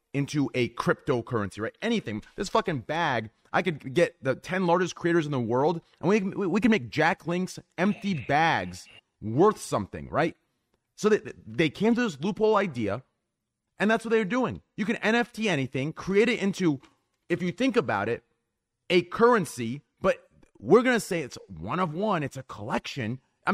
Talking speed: 180 wpm